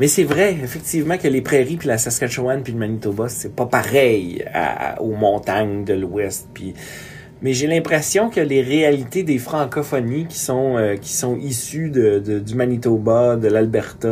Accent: Canadian